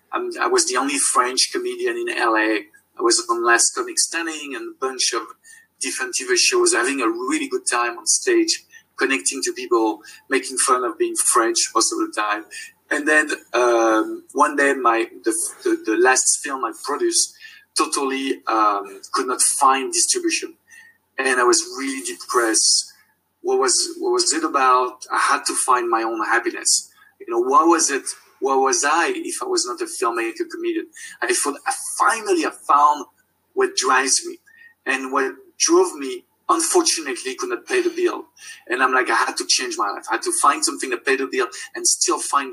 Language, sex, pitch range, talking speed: English, male, 335-385 Hz, 185 wpm